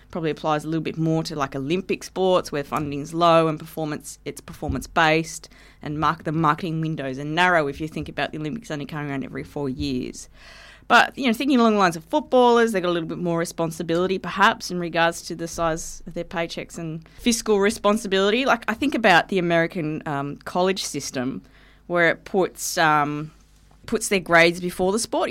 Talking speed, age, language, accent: 200 wpm, 20-39, English, Australian